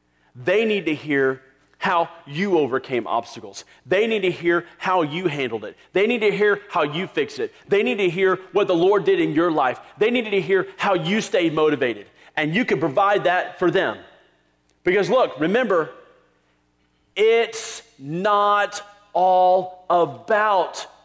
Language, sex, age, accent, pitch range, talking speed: English, male, 40-59, American, 130-215 Hz, 165 wpm